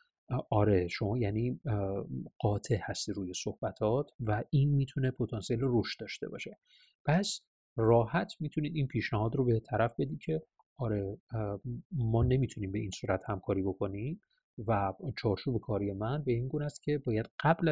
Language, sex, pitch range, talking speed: Persian, male, 105-150 Hz, 145 wpm